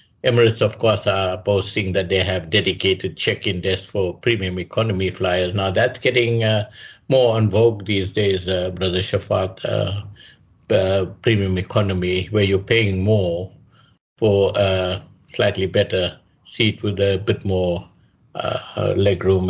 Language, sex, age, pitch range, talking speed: English, male, 50-69, 95-105 Hz, 140 wpm